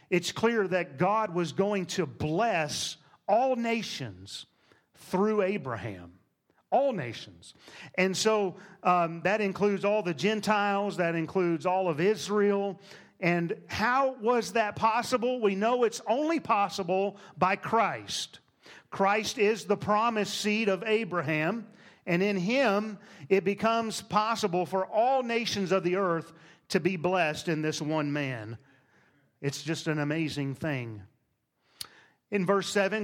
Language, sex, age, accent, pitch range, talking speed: English, male, 40-59, American, 165-205 Hz, 135 wpm